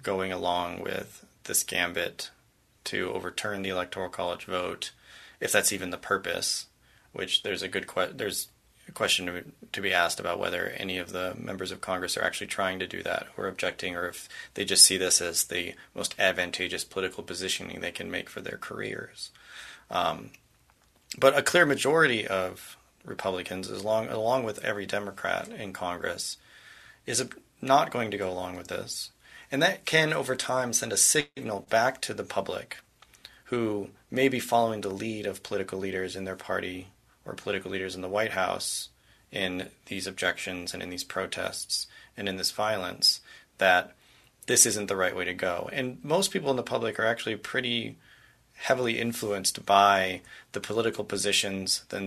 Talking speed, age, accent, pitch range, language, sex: 175 wpm, 30-49, American, 95-115 Hz, English, male